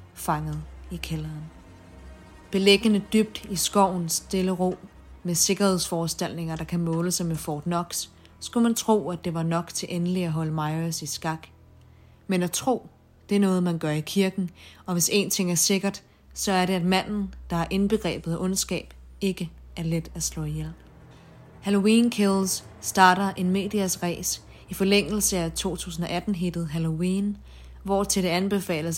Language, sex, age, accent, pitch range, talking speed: Danish, female, 30-49, native, 165-195 Hz, 165 wpm